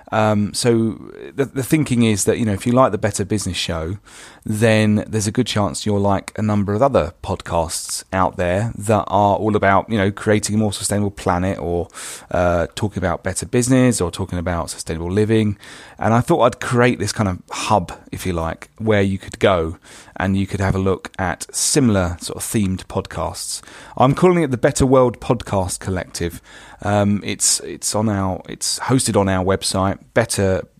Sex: male